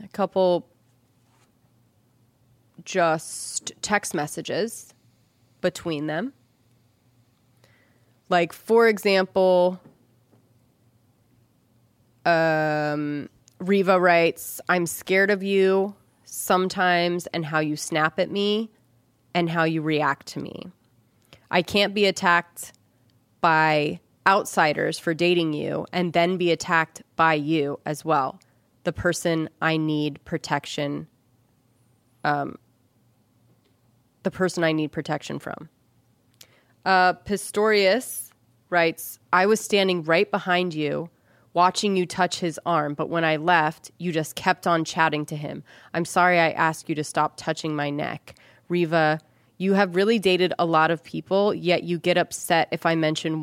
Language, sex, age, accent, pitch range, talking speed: English, female, 20-39, American, 125-180 Hz, 125 wpm